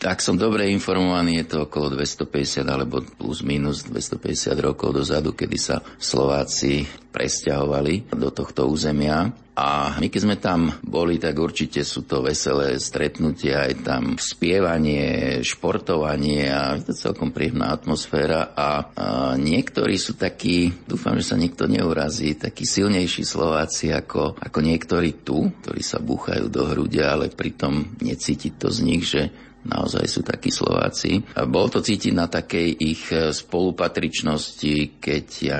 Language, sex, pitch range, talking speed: Slovak, male, 75-85 Hz, 140 wpm